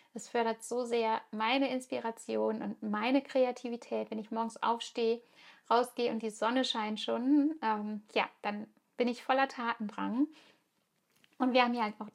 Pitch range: 205-245 Hz